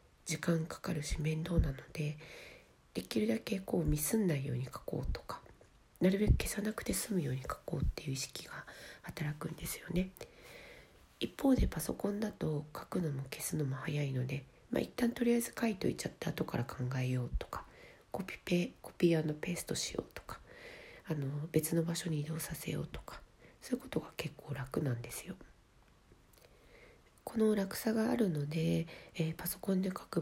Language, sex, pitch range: Japanese, female, 145-190 Hz